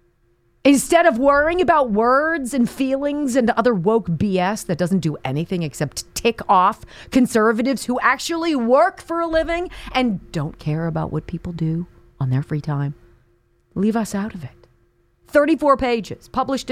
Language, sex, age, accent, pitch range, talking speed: English, female, 40-59, American, 160-265 Hz, 160 wpm